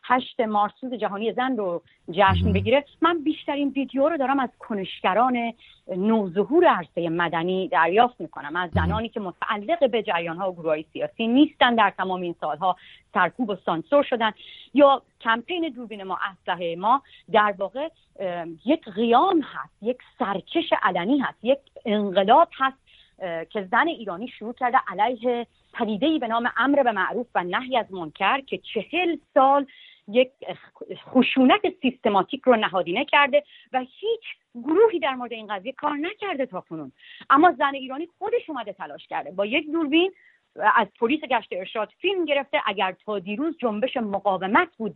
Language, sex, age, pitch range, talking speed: English, female, 40-59, 200-285 Hz, 155 wpm